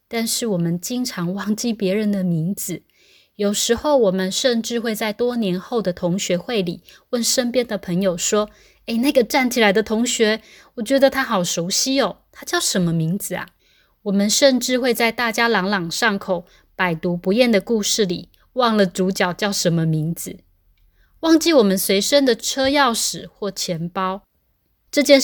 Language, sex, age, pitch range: Chinese, female, 20-39, 185-235 Hz